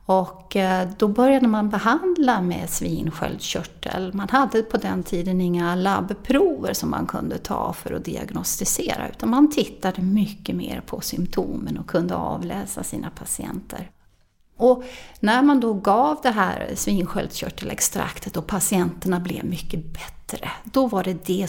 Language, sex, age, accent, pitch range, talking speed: English, female, 30-49, Swedish, 185-245 Hz, 140 wpm